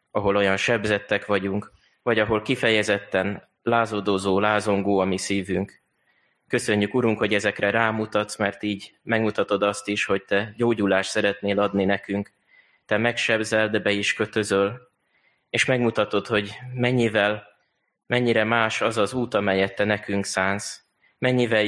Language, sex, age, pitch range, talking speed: Hungarian, male, 20-39, 100-110 Hz, 135 wpm